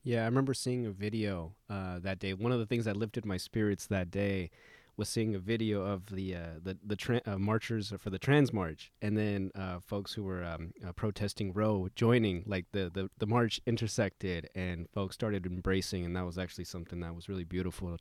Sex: male